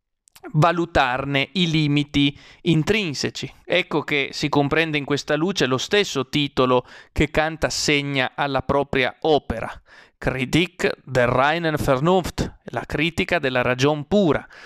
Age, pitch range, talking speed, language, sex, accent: 30-49, 140-175 Hz, 120 wpm, Italian, male, native